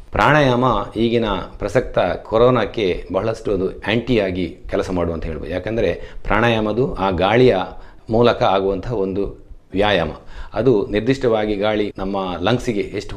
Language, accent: Kannada, native